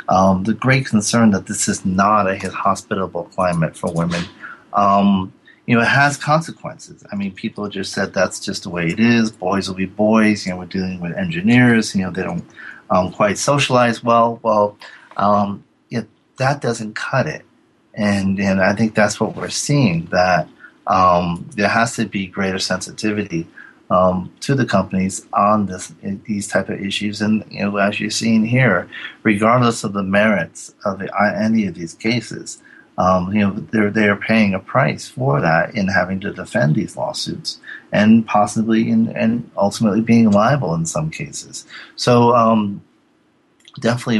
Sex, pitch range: male, 95-115 Hz